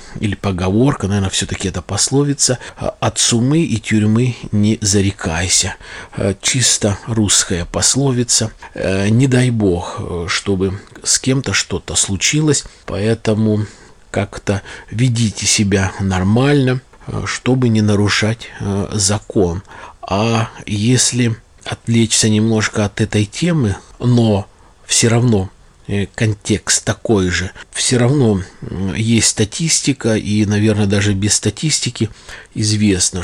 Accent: native